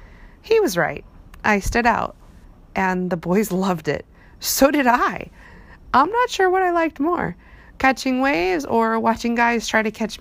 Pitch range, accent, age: 170-225 Hz, American, 30-49